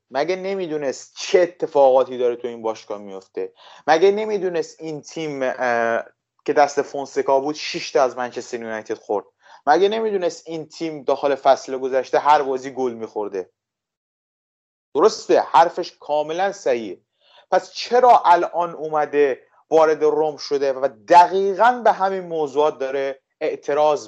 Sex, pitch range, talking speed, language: male, 135-200 Hz, 130 wpm, Persian